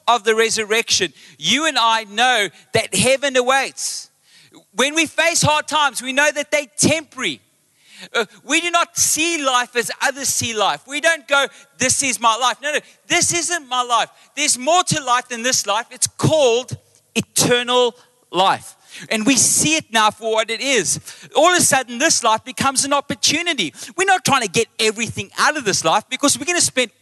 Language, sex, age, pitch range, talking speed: English, male, 30-49, 240-300 Hz, 190 wpm